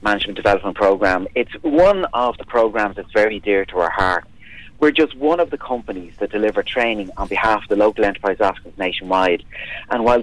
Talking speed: 195 wpm